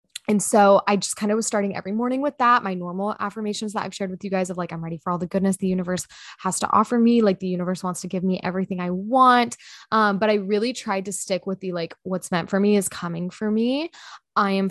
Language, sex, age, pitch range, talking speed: English, female, 20-39, 185-225 Hz, 265 wpm